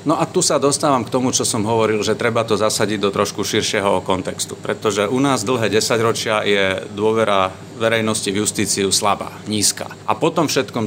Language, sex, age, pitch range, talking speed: Slovak, male, 40-59, 105-120 Hz, 180 wpm